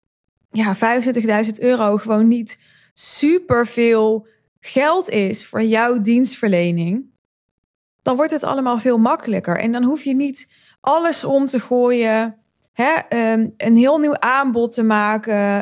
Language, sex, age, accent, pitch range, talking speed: Dutch, female, 20-39, Dutch, 205-255 Hz, 135 wpm